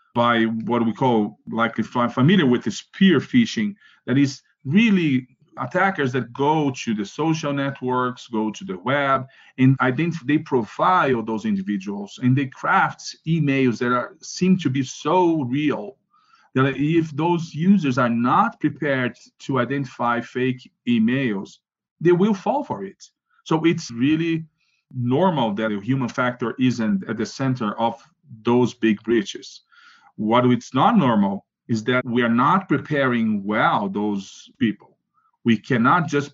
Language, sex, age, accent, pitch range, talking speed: English, male, 40-59, Brazilian, 115-160 Hz, 150 wpm